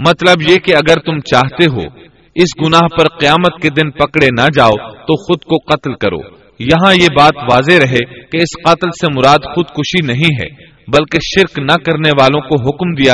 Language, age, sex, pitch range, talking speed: Urdu, 40-59, male, 130-155 Hz, 190 wpm